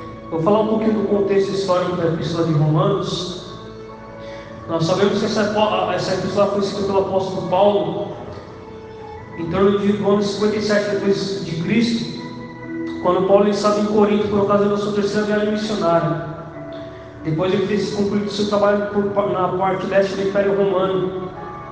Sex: male